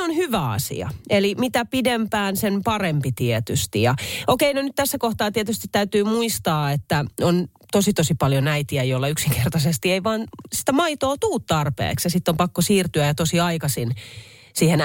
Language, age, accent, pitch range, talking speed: Finnish, 30-49, native, 130-205 Hz, 160 wpm